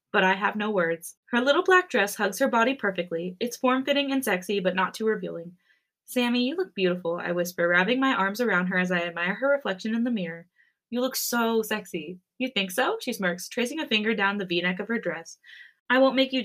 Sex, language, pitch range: female, English, 180-255 Hz